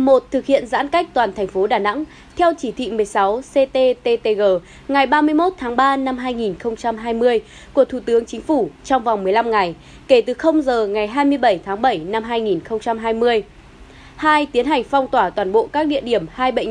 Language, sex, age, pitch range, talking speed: Vietnamese, female, 20-39, 215-290 Hz, 185 wpm